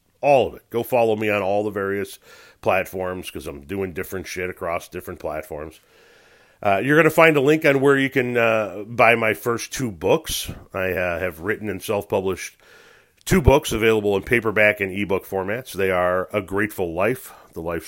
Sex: male